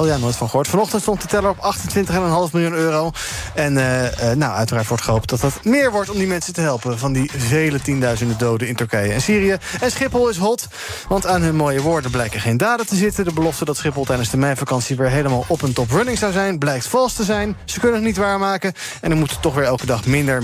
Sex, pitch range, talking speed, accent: male, 130-195 Hz, 245 wpm, Dutch